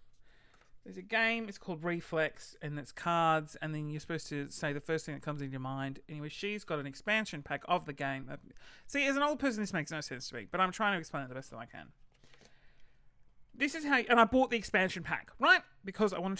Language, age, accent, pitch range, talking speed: English, 30-49, Australian, 145-210 Hz, 245 wpm